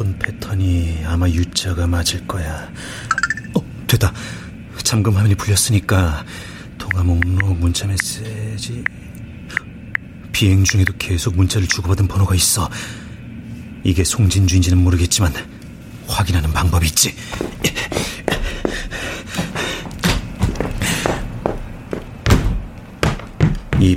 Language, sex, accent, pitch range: Korean, male, native, 85-100 Hz